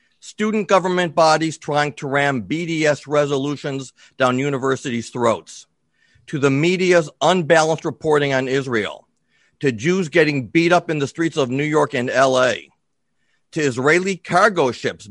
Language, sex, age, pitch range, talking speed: English, male, 40-59, 130-170 Hz, 140 wpm